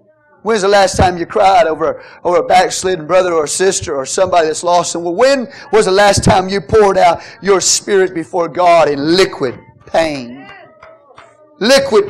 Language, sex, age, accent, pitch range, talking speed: English, male, 40-59, American, 175-240 Hz, 175 wpm